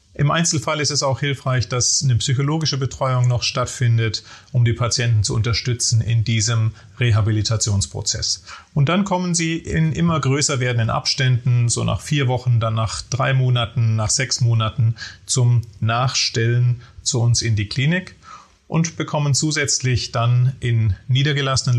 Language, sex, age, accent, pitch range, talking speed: German, male, 30-49, German, 110-130 Hz, 145 wpm